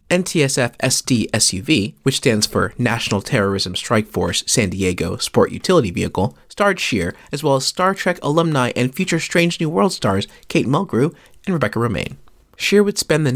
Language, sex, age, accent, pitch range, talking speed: English, male, 30-49, American, 100-160 Hz, 170 wpm